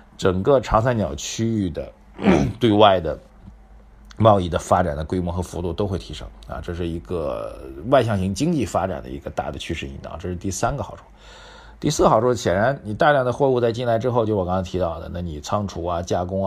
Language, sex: Chinese, male